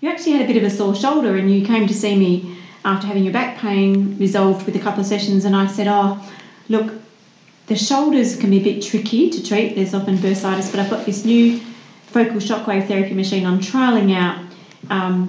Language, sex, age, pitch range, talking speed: English, female, 40-59, 190-220 Hz, 220 wpm